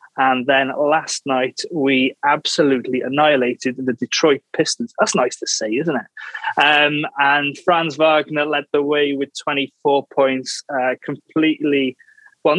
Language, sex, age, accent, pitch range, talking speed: English, male, 20-39, British, 135-165 Hz, 140 wpm